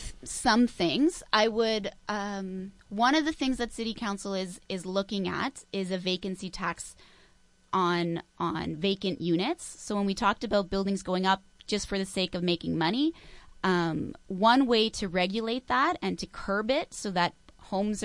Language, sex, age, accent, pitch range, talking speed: English, female, 20-39, American, 180-215 Hz, 175 wpm